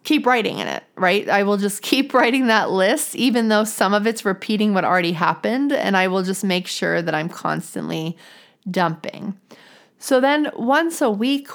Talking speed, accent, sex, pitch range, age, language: 185 wpm, American, female, 190-250 Hz, 30-49, English